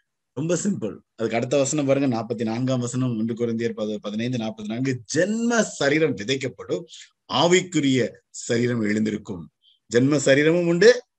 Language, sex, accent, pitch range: Tamil, male, native, 120-155 Hz